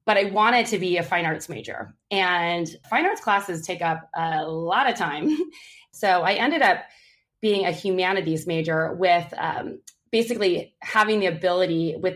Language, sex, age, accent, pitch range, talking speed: English, female, 20-39, American, 165-205 Hz, 170 wpm